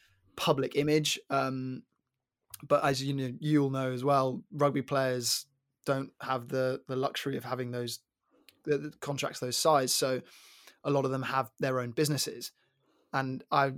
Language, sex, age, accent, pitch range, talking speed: English, male, 20-39, British, 130-145 Hz, 160 wpm